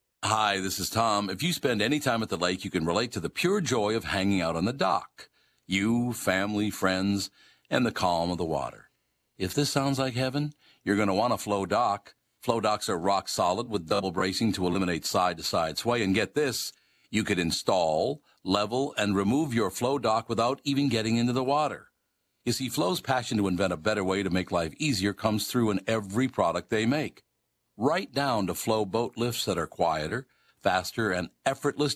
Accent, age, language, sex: American, 50-69, English, male